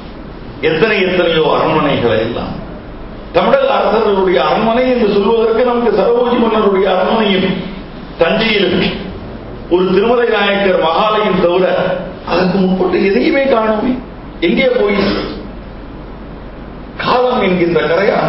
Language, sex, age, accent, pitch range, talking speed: Tamil, male, 50-69, native, 160-225 Hz, 90 wpm